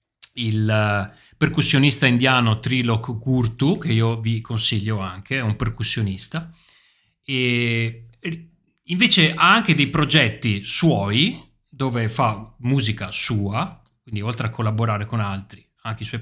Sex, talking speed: male, 125 wpm